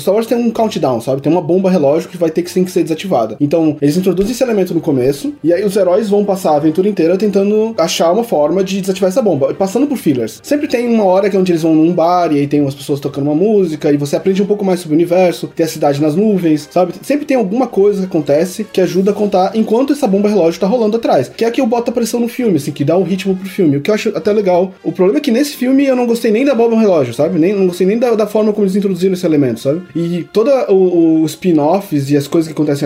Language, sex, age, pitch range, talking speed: Portuguese, male, 20-39, 160-215 Hz, 280 wpm